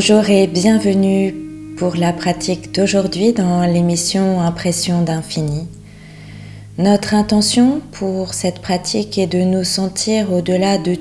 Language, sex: French, female